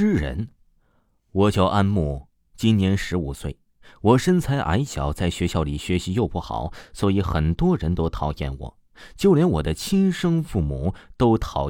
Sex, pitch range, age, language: male, 85-120 Hz, 30-49, Chinese